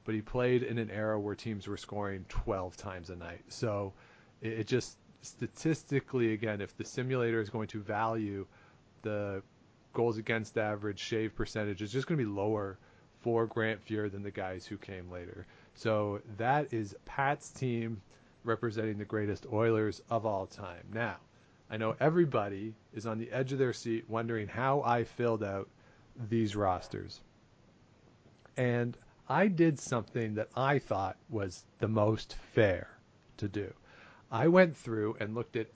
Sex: male